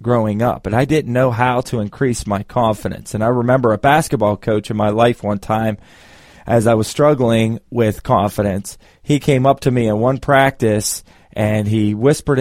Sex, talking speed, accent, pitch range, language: male, 190 wpm, American, 105-130 Hz, English